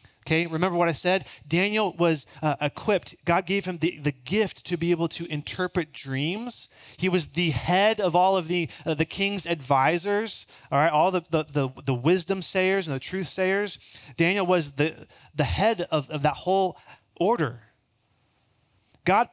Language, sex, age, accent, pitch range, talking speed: English, male, 20-39, American, 115-160 Hz, 165 wpm